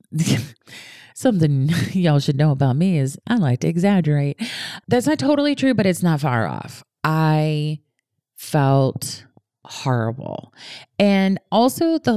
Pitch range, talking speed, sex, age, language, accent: 135-170 Hz, 130 wpm, female, 30-49, English, American